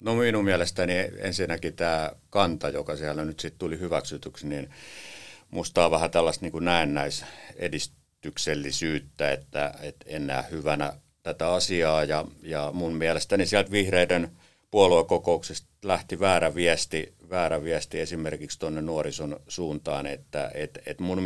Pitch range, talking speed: 75-85 Hz, 130 wpm